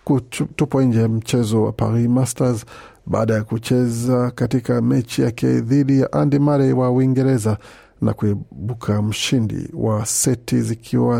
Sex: male